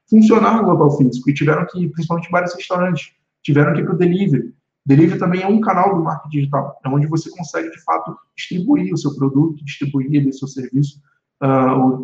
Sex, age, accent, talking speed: male, 20-39, Brazilian, 200 wpm